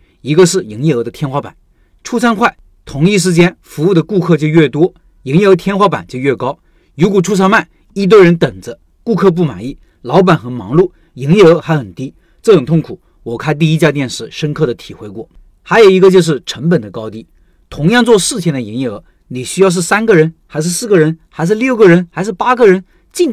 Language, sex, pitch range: Chinese, male, 140-190 Hz